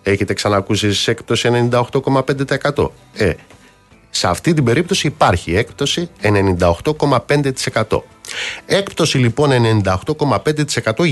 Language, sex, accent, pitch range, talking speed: Greek, male, native, 95-145 Hz, 85 wpm